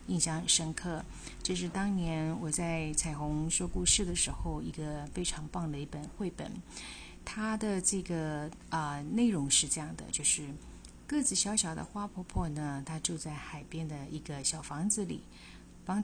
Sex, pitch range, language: female, 150-200 Hz, Chinese